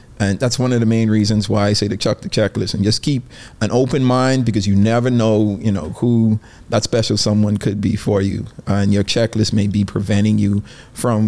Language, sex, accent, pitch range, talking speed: English, male, American, 105-120 Hz, 225 wpm